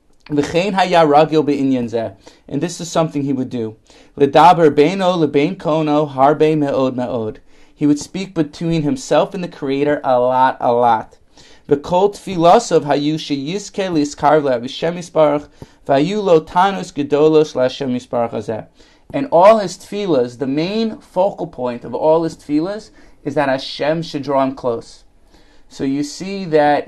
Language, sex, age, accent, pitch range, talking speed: English, male, 30-49, American, 135-175 Hz, 95 wpm